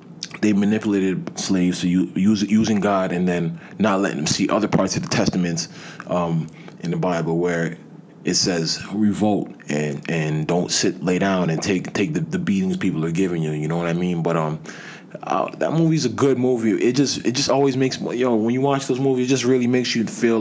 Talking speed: 220 wpm